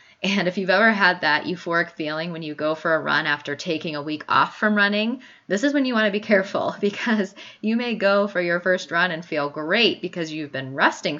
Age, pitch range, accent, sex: 20-39, 150-185 Hz, American, female